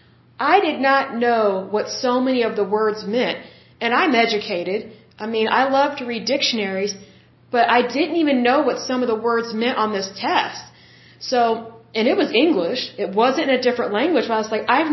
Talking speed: 200 wpm